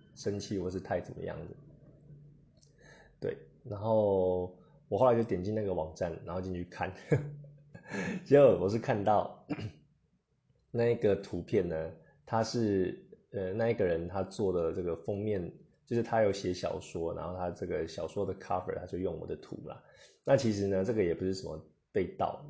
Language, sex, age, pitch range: Chinese, male, 20-39, 90-115 Hz